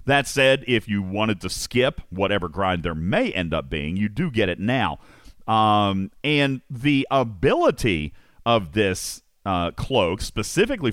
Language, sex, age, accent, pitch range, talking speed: English, male, 40-59, American, 95-130 Hz, 155 wpm